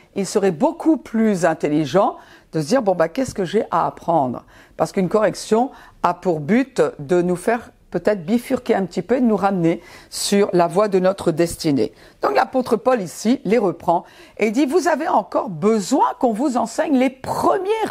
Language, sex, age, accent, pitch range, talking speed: French, female, 50-69, French, 180-255 Hz, 200 wpm